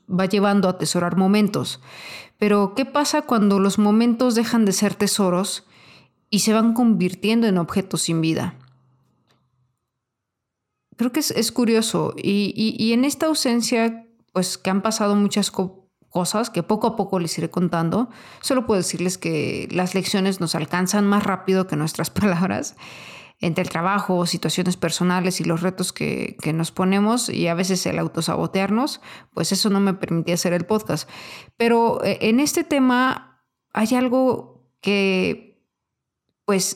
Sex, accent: female, Mexican